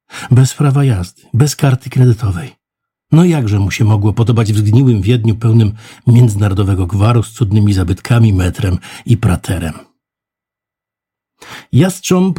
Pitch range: 105-145 Hz